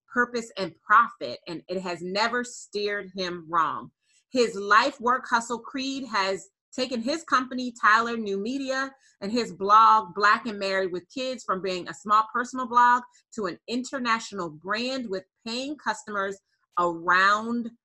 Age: 30-49